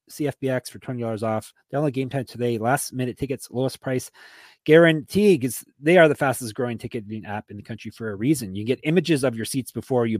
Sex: male